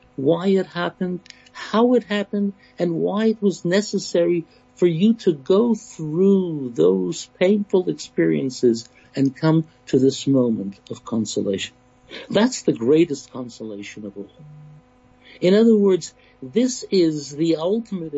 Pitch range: 125-175 Hz